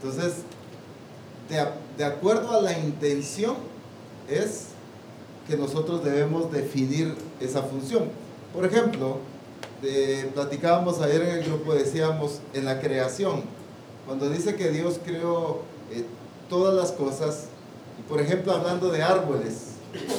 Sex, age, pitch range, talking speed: male, 40-59, 140-190 Hz, 115 wpm